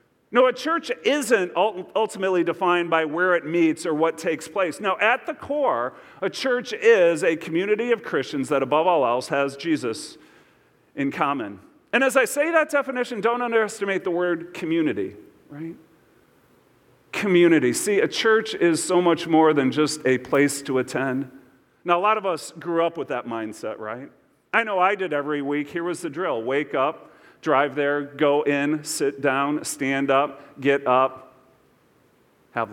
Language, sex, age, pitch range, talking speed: English, male, 40-59, 150-225 Hz, 170 wpm